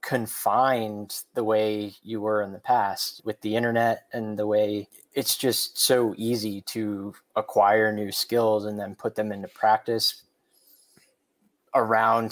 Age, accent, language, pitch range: 20-39, American, English, 105-120 Hz